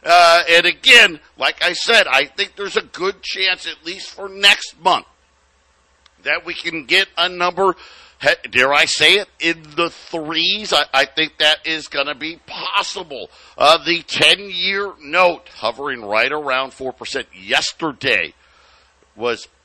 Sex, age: male, 50-69